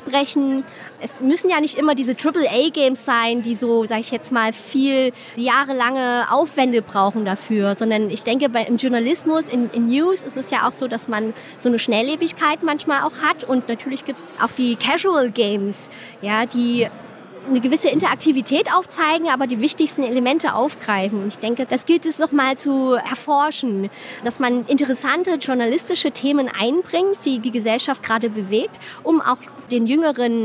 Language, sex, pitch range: German, female, 230-275 Hz